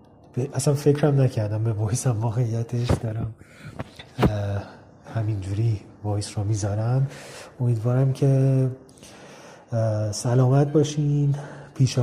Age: 30-49